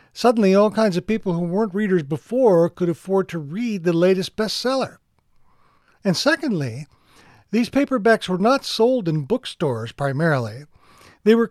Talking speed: 145 wpm